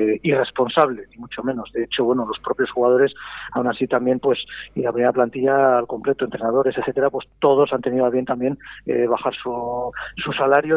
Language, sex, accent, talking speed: Spanish, male, Spanish, 190 wpm